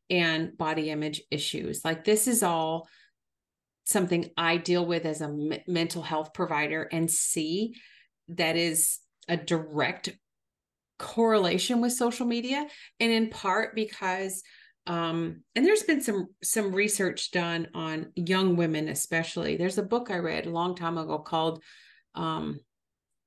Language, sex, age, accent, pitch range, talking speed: English, female, 40-59, American, 160-185 Hz, 140 wpm